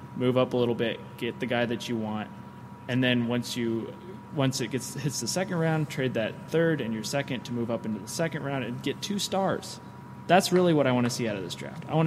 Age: 20-39